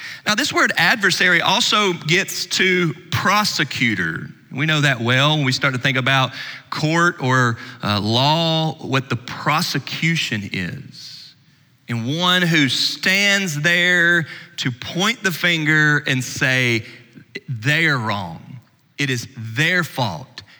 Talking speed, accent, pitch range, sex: 130 wpm, American, 125-150 Hz, male